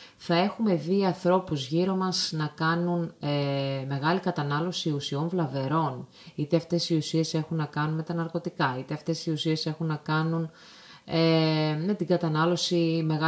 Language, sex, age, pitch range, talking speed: Greek, female, 30-49, 155-200 Hz, 155 wpm